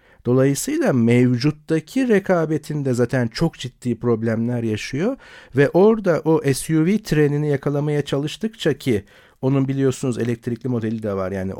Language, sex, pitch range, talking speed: Turkish, male, 110-145 Hz, 120 wpm